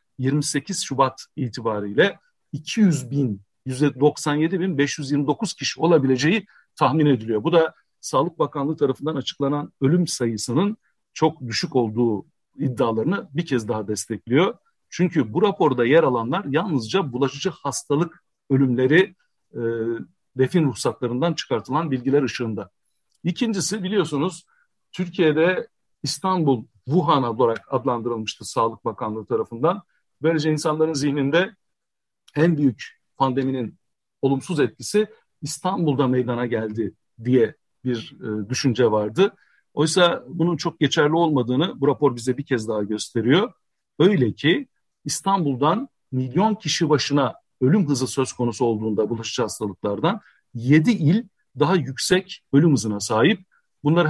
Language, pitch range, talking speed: Turkish, 125-165 Hz, 110 wpm